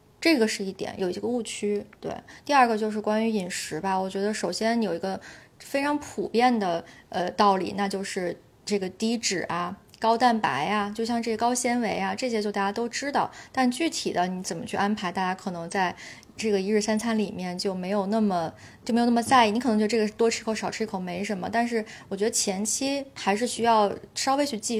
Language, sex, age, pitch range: Chinese, female, 20-39, 195-230 Hz